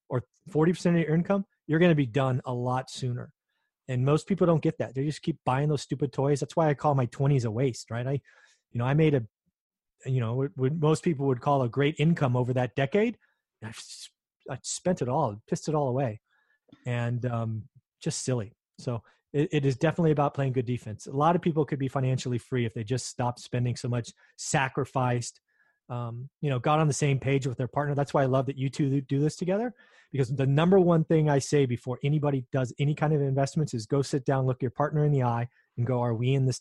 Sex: male